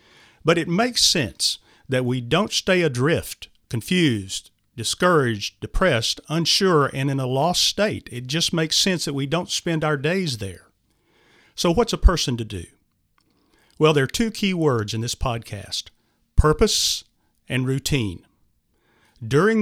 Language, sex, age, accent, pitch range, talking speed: English, male, 50-69, American, 115-160 Hz, 145 wpm